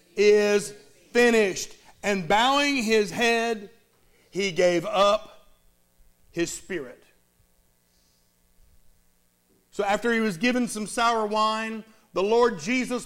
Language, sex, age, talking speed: English, male, 50-69, 100 wpm